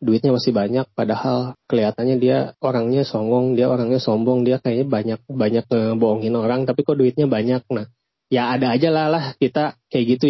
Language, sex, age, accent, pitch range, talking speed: Indonesian, male, 20-39, native, 115-135 Hz, 170 wpm